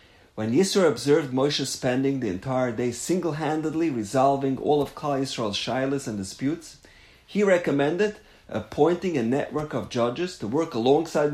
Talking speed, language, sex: 145 wpm, English, male